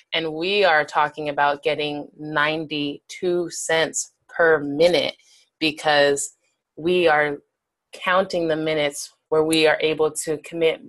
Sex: female